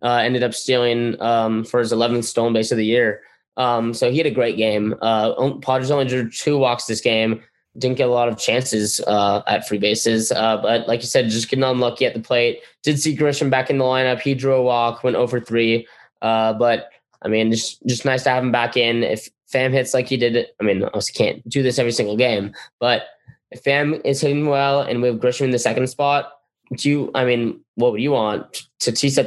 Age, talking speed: 10-29, 240 wpm